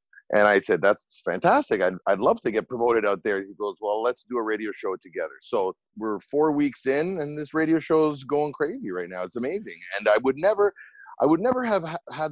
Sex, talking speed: male, 235 wpm